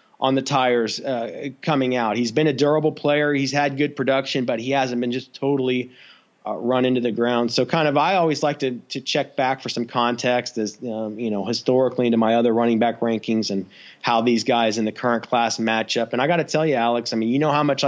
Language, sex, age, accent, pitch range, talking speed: English, male, 30-49, American, 120-145 Hz, 245 wpm